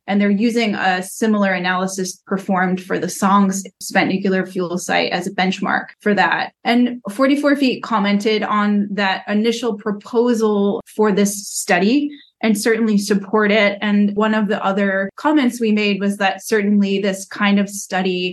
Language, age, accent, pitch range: English, 20-39, American, 190-210 Hz